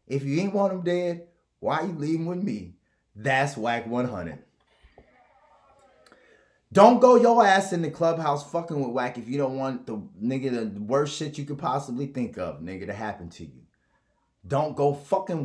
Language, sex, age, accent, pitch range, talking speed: English, male, 30-49, American, 125-175 Hz, 185 wpm